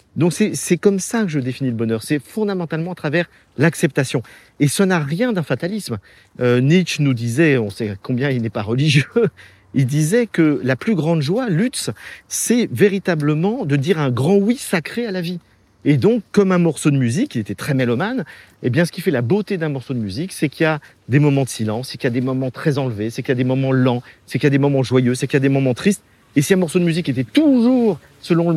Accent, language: French, French